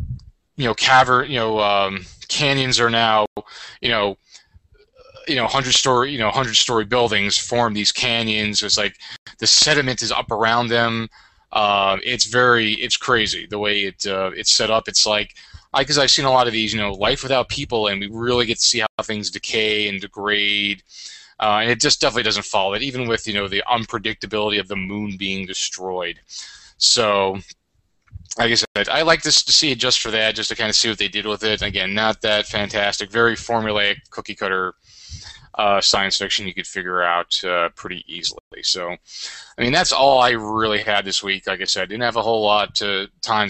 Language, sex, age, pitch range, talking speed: English, male, 20-39, 100-115 Hz, 205 wpm